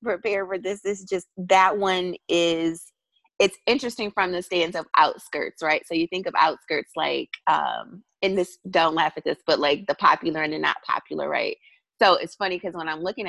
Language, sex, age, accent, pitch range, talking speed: English, female, 30-49, American, 165-210 Hz, 210 wpm